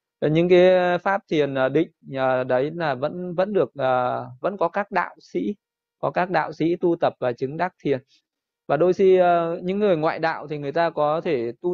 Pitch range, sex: 140-180 Hz, male